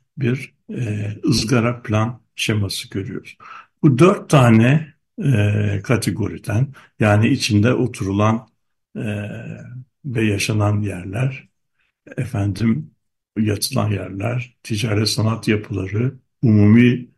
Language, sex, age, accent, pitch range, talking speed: Turkish, male, 60-79, native, 105-130 Hz, 85 wpm